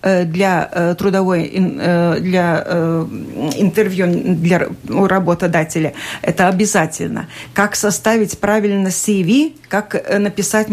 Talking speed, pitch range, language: 85 wpm, 180-215 Hz, Russian